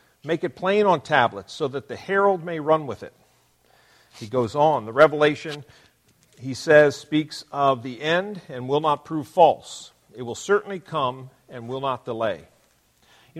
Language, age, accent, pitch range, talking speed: English, 50-69, American, 130-165 Hz, 170 wpm